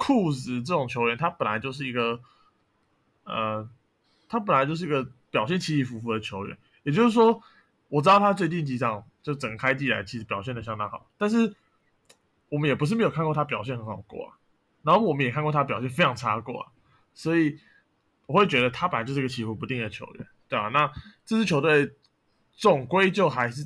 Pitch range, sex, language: 120-150 Hz, male, Chinese